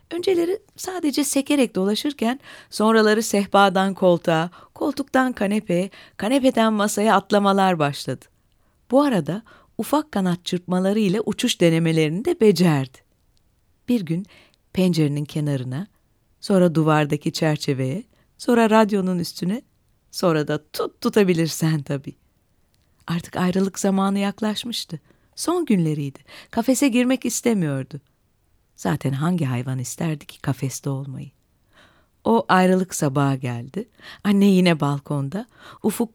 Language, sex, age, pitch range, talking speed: Turkish, female, 40-59, 150-220 Hz, 105 wpm